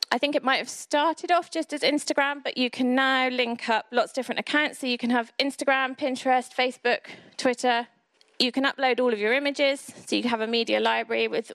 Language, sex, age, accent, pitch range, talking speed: English, female, 20-39, British, 220-265 Hz, 225 wpm